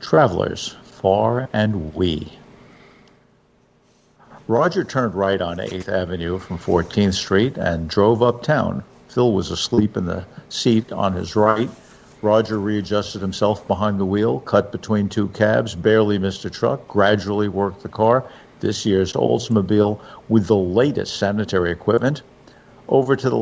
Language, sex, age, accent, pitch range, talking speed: English, male, 50-69, American, 100-115 Hz, 140 wpm